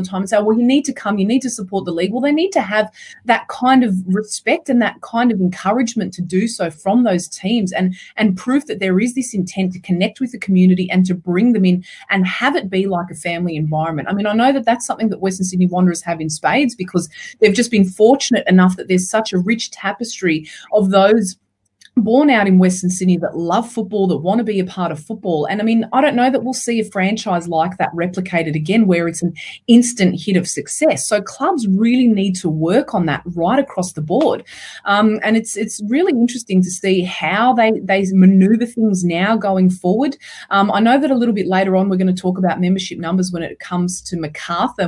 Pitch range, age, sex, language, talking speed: 180-225 Hz, 30-49, female, English, 235 wpm